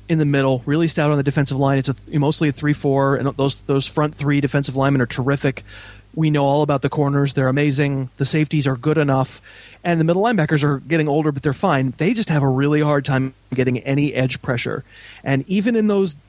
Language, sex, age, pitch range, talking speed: English, male, 30-49, 130-160 Hz, 235 wpm